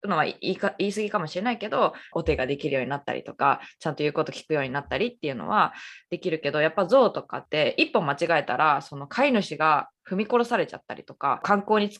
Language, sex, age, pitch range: Japanese, female, 20-39, 150-200 Hz